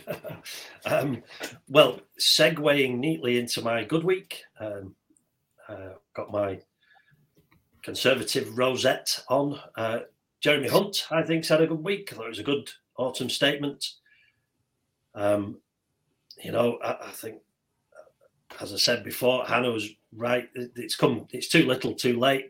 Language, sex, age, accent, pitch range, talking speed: English, male, 40-59, British, 110-145 Hz, 135 wpm